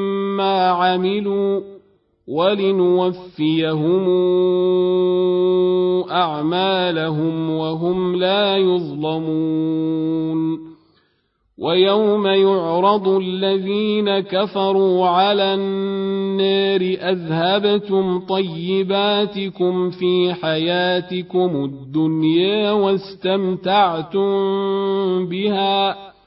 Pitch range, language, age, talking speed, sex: 180-195 Hz, Arabic, 40-59, 40 wpm, male